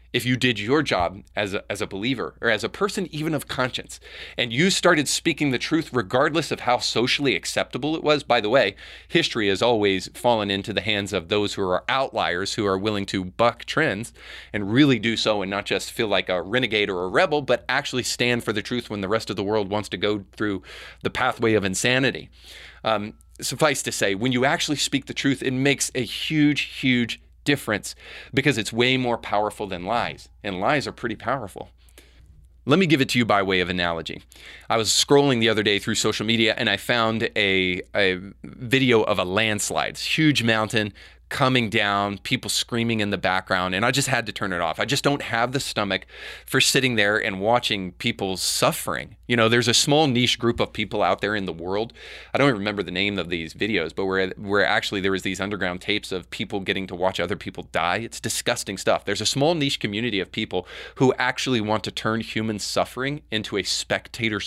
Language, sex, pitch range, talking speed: English, male, 100-125 Hz, 215 wpm